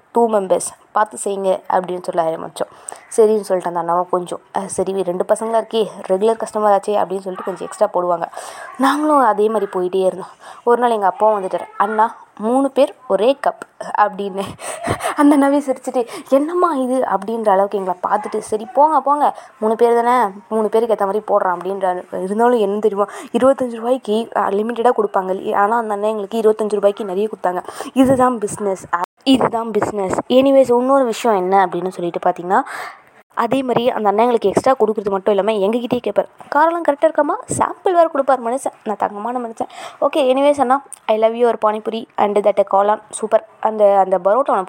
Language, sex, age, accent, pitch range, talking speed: Tamil, female, 20-39, native, 200-250 Hz, 160 wpm